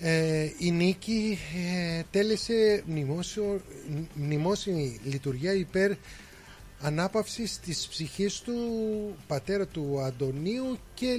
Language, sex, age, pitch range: Greek, male, 30-49, 140-195 Hz